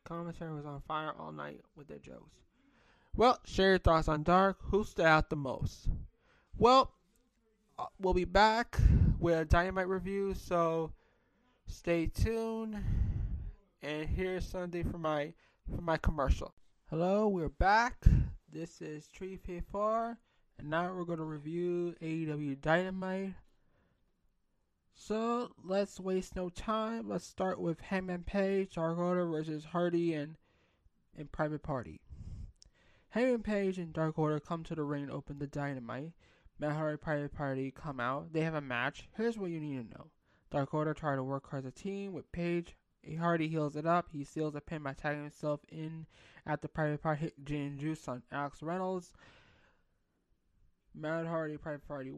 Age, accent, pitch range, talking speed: 20-39, American, 145-185 Hz, 160 wpm